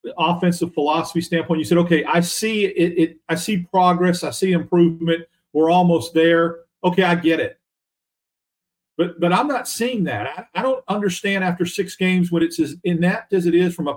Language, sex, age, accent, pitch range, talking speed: English, male, 40-59, American, 160-185 Hz, 200 wpm